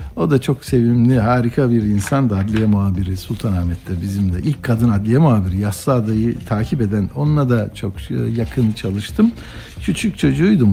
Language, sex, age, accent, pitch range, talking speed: Turkish, male, 60-79, native, 115-175 Hz, 150 wpm